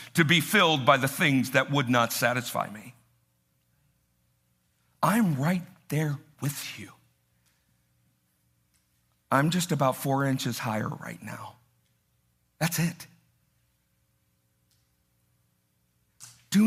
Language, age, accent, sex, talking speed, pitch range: English, 50-69, American, male, 95 wpm, 125-185 Hz